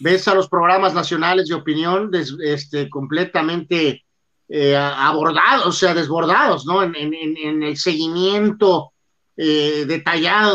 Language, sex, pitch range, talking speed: Spanish, male, 150-190 Hz, 130 wpm